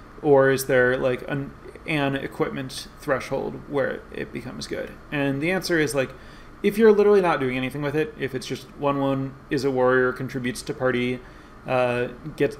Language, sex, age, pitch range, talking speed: English, male, 30-49, 125-140 Hz, 180 wpm